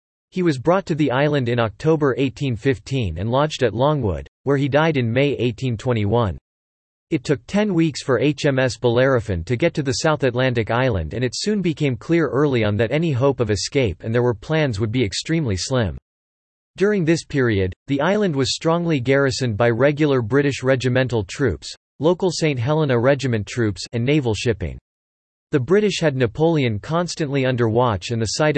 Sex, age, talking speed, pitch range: male, 40-59, 175 wpm, 115-150 Hz